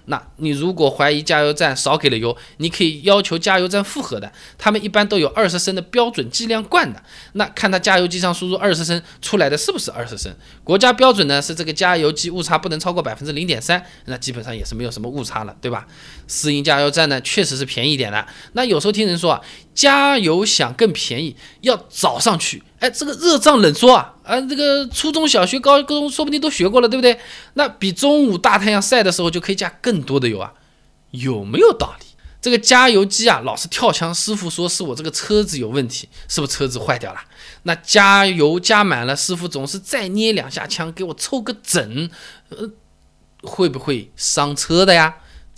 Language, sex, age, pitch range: Chinese, male, 20-39, 150-220 Hz